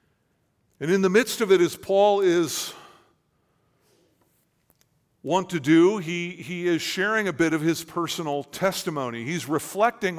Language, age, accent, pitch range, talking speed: English, 50-69, American, 135-175 Hz, 140 wpm